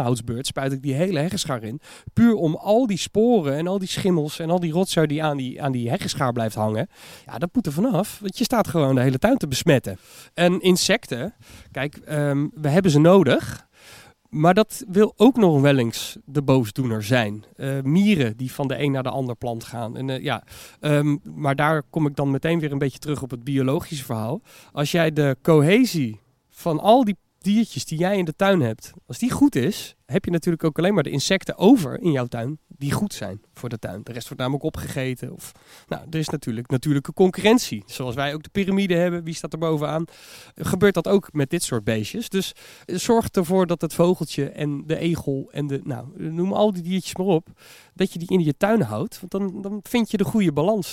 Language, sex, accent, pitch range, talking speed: Dutch, male, Dutch, 135-185 Hz, 220 wpm